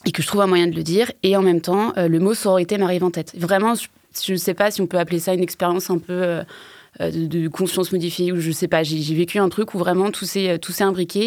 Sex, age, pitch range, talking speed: female, 20-39, 165-185 Hz, 300 wpm